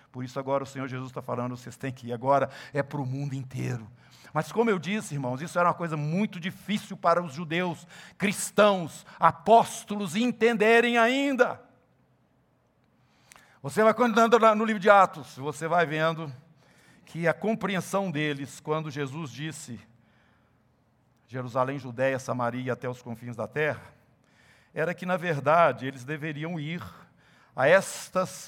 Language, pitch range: Portuguese, 130-205 Hz